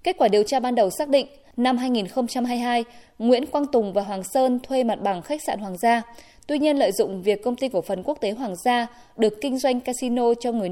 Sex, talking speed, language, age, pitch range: female, 235 wpm, Vietnamese, 20-39, 215-270 Hz